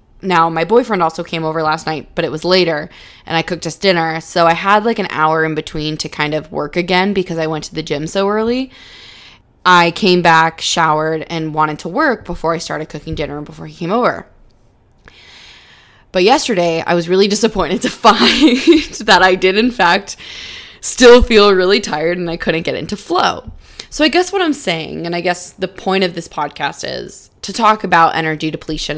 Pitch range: 155-195 Hz